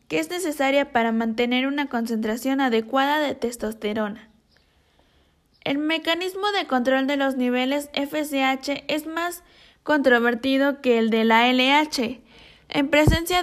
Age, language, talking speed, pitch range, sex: 20-39, English, 125 wpm, 245-300 Hz, female